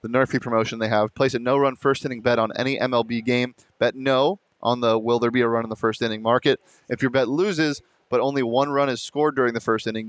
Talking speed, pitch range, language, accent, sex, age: 260 wpm, 120-145 Hz, English, American, male, 20-39